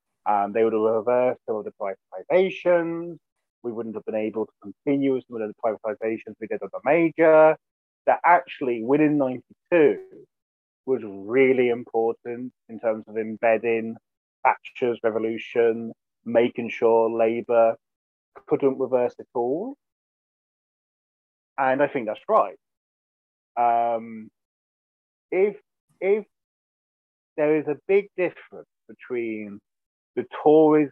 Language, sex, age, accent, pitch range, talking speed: English, male, 30-49, British, 110-140 Hz, 130 wpm